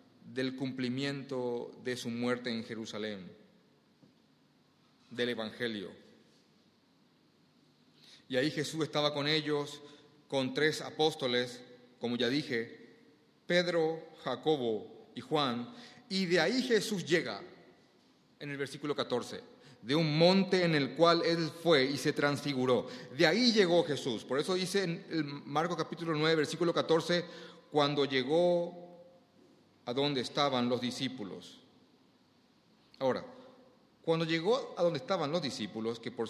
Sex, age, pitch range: male, 40-59, 130-175 Hz